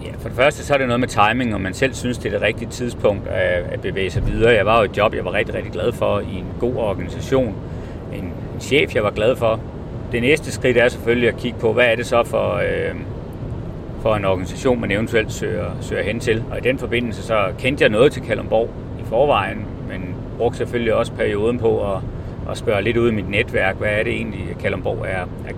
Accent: native